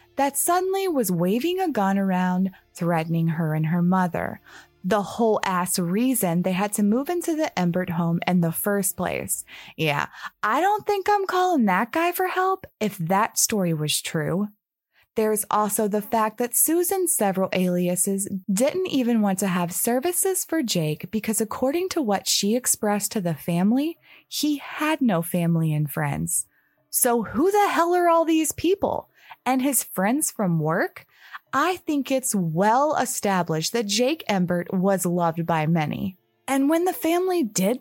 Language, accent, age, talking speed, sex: English, American, 20-39, 165 wpm, female